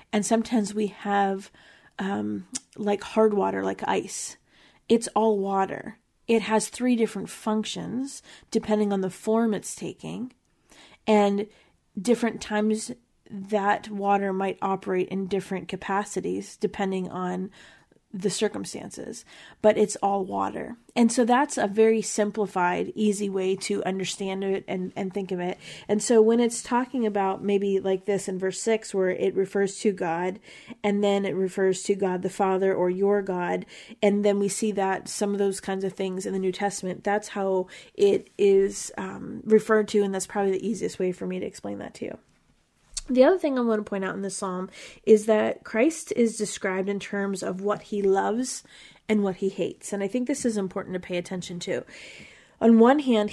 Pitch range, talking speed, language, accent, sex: 190-220 Hz, 180 wpm, English, American, female